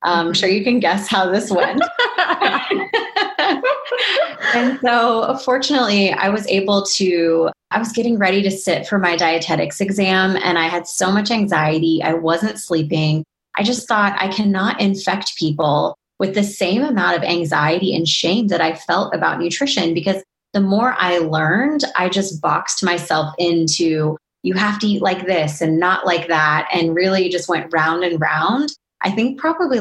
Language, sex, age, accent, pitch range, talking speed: English, female, 20-39, American, 165-210 Hz, 170 wpm